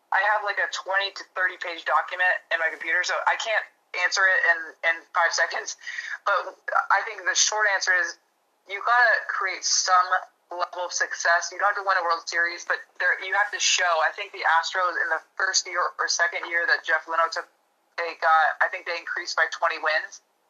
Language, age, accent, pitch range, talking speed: English, 20-39, American, 165-195 Hz, 215 wpm